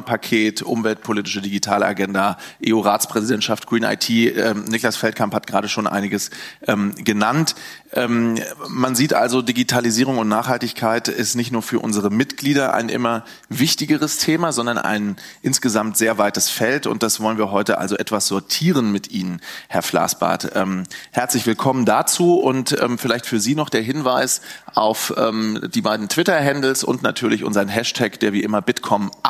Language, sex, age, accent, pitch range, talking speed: German, male, 30-49, German, 105-125 Hz, 155 wpm